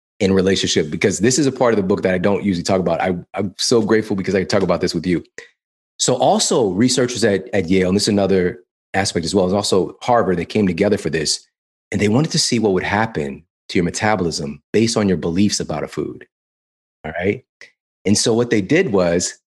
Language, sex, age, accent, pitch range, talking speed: English, male, 30-49, American, 90-115 Hz, 230 wpm